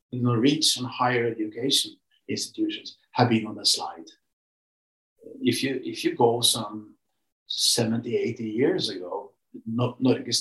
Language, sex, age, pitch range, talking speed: English, male, 50-69, 115-135 Hz, 115 wpm